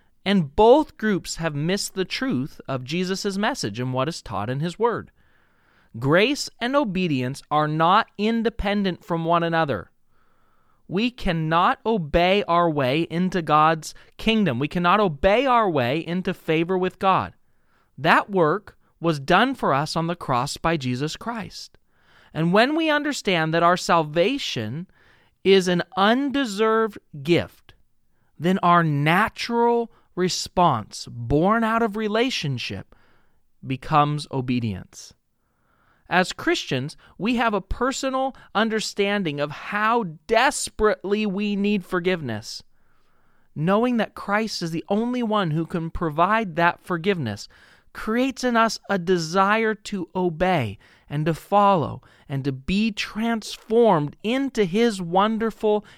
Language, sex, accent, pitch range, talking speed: English, male, American, 150-215 Hz, 125 wpm